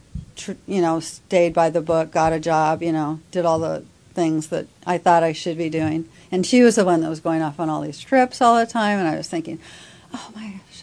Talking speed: 255 wpm